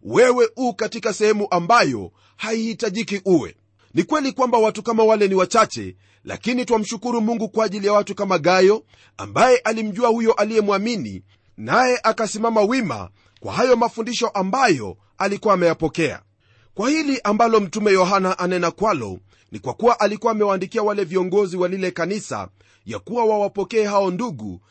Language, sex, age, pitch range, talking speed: Swahili, male, 40-59, 170-220 Hz, 145 wpm